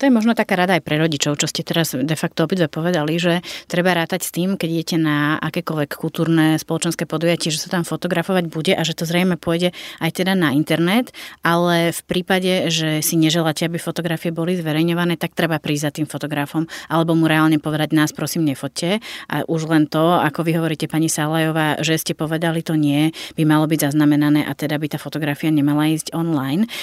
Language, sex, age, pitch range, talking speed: Slovak, female, 30-49, 155-180 Hz, 200 wpm